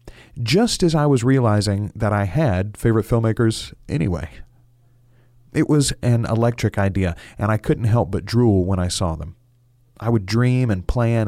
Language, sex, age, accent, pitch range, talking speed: English, male, 40-59, American, 100-120 Hz, 165 wpm